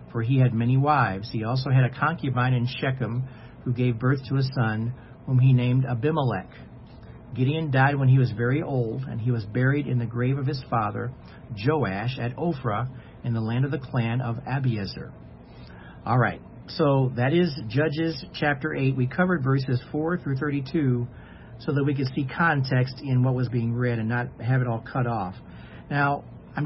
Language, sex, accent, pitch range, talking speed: English, male, American, 120-135 Hz, 190 wpm